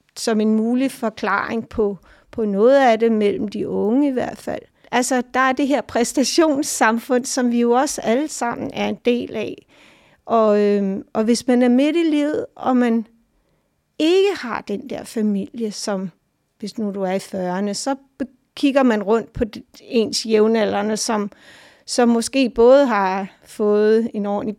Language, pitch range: Danish, 220-270 Hz